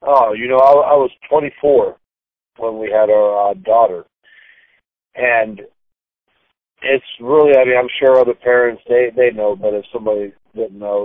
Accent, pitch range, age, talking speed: American, 110-135 Hz, 40-59, 165 wpm